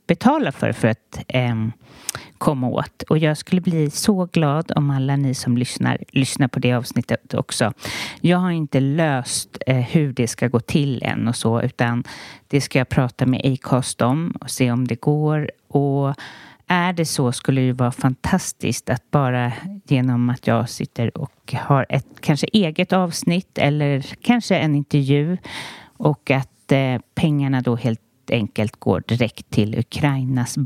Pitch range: 120-160 Hz